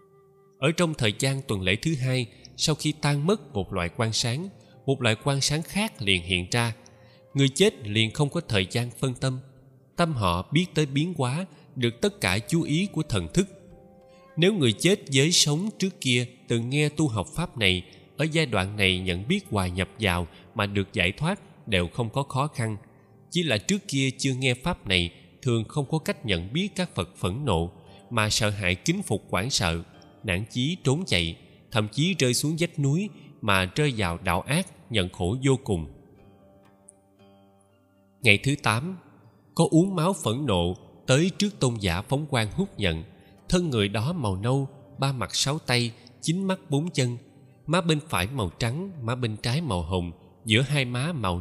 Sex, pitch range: male, 100-155 Hz